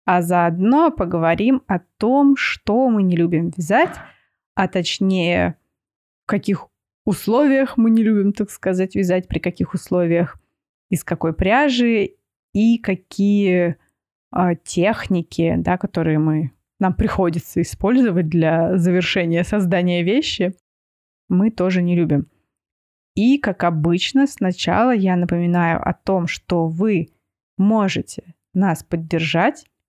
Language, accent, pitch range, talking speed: Russian, native, 170-215 Hz, 110 wpm